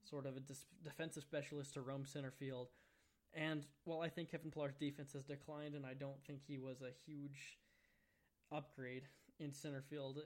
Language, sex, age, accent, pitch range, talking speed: English, male, 10-29, American, 135-150 Hz, 180 wpm